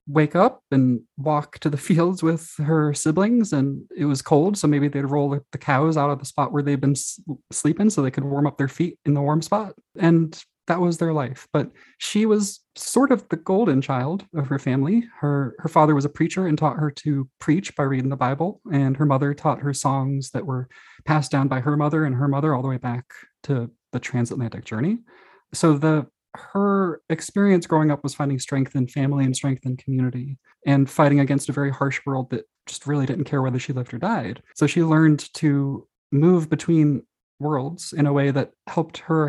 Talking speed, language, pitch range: 215 wpm, English, 135-160 Hz